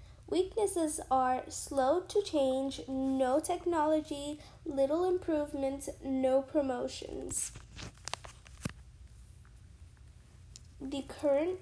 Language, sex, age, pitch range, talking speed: English, female, 10-29, 255-315 Hz, 65 wpm